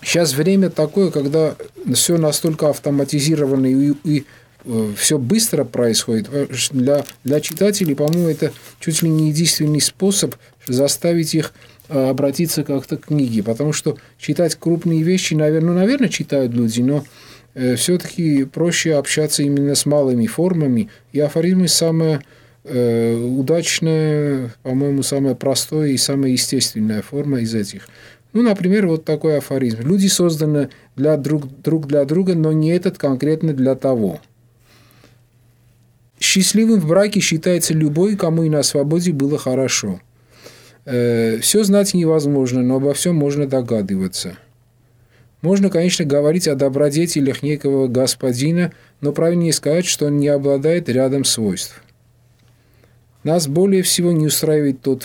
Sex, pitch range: male, 125-160 Hz